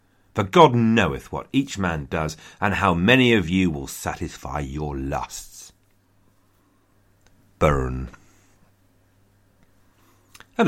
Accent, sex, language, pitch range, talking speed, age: British, male, English, 80-105 Hz, 100 wpm, 40-59